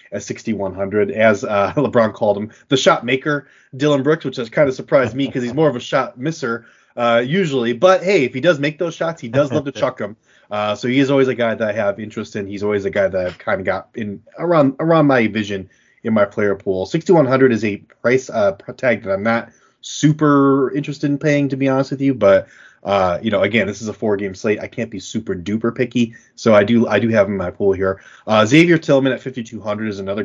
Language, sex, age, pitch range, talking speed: English, male, 30-49, 100-130 Hz, 255 wpm